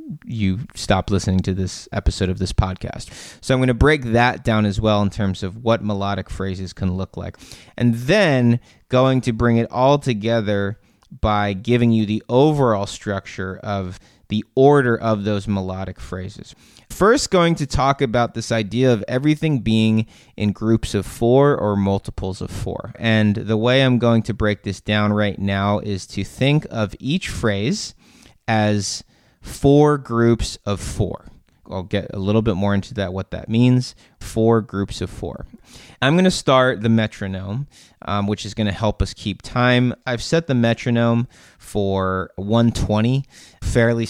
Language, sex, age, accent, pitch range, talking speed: English, male, 20-39, American, 95-120 Hz, 170 wpm